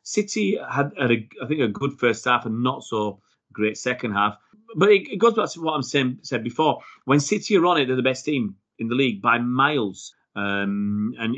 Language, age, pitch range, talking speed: English, 30-49, 110-135 Hz, 225 wpm